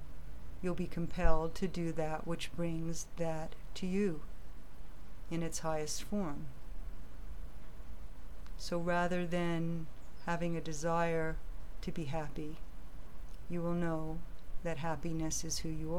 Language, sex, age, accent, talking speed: English, female, 50-69, American, 120 wpm